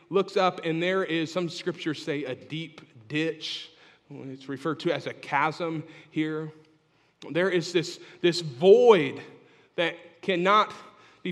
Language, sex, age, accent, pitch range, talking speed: English, male, 40-59, American, 170-235 Hz, 140 wpm